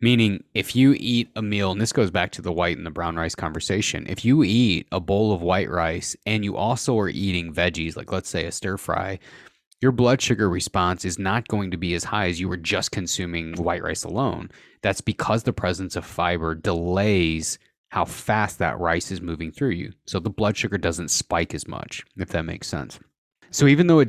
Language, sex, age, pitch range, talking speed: English, male, 30-49, 90-115 Hz, 220 wpm